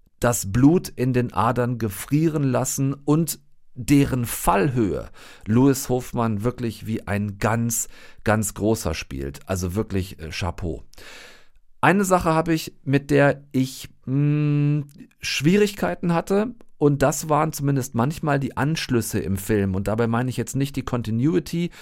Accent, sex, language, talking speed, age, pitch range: German, male, German, 135 wpm, 40-59, 120-155 Hz